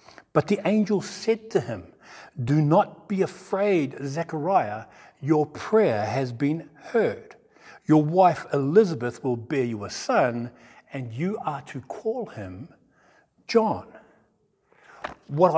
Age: 60-79